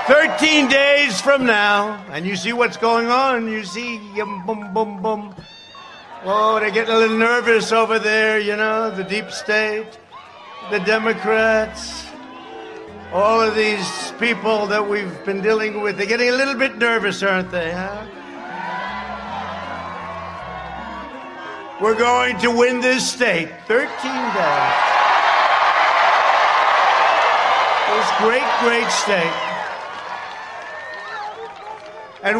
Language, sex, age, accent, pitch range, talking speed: English, male, 60-79, American, 215-250 Hz, 115 wpm